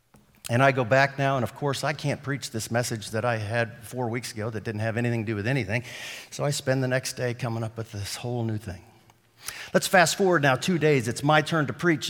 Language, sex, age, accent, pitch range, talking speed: English, male, 50-69, American, 125-170 Hz, 255 wpm